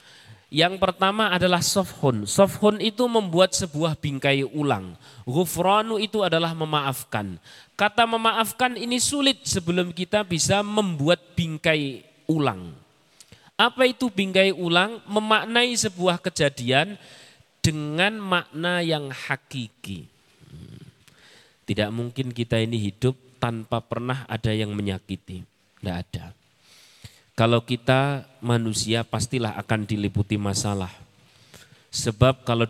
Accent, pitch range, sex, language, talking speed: native, 110-165 Hz, male, Indonesian, 105 wpm